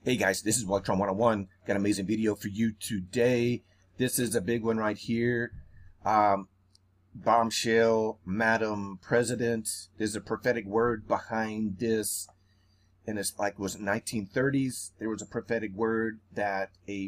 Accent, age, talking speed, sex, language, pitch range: American, 30-49, 155 wpm, male, English, 100-120 Hz